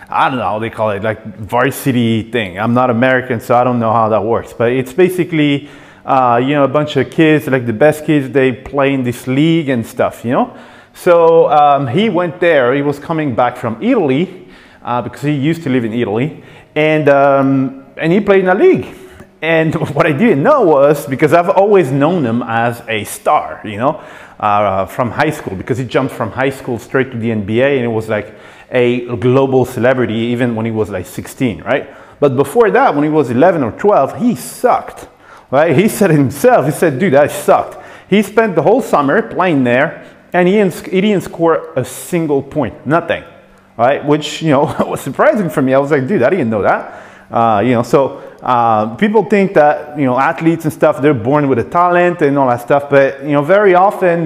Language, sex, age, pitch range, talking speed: English, male, 30-49, 120-160 Hz, 215 wpm